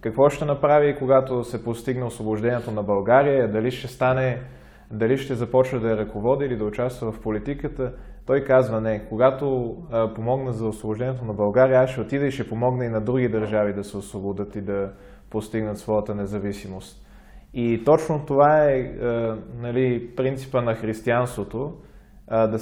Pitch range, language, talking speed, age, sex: 110-130 Hz, Bulgarian, 155 wpm, 20-39, male